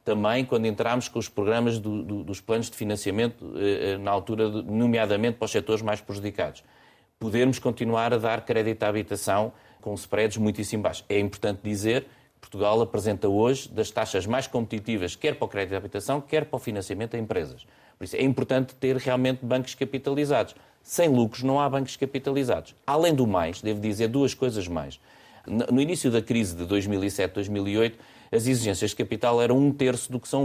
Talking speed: 185 wpm